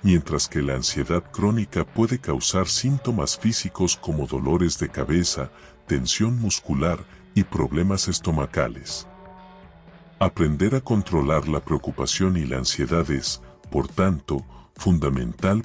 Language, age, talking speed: Spanish, 50-69, 115 wpm